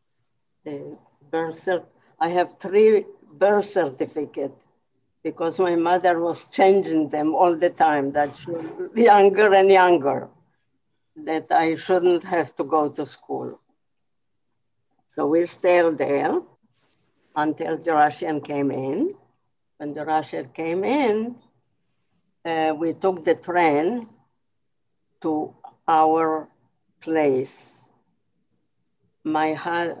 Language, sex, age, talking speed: English, female, 60-79, 105 wpm